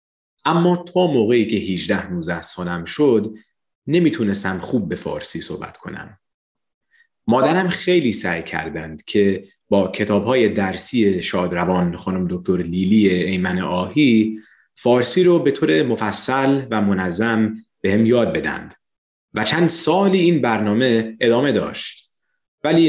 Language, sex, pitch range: Persian, male, 95-140 Hz